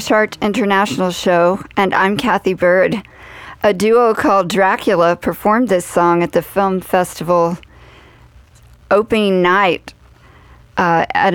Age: 50-69